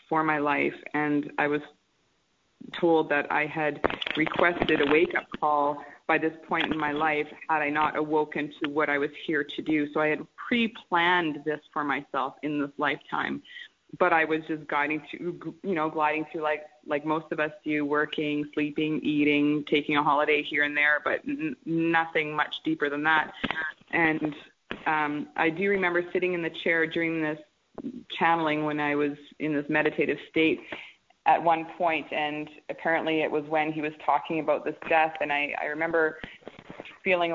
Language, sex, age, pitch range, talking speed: English, female, 20-39, 150-160 Hz, 175 wpm